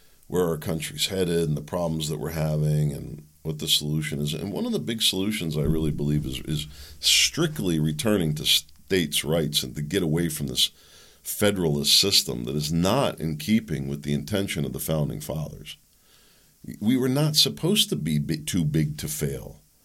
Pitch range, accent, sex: 75-115 Hz, American, male